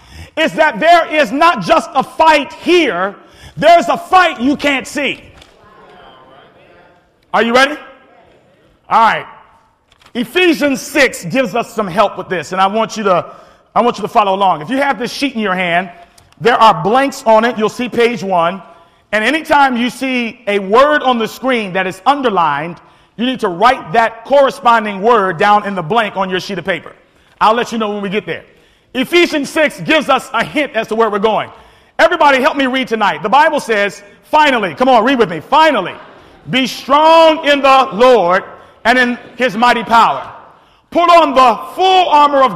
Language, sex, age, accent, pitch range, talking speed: English, male, 40-59, American, 220-285 Hz, 185 wpm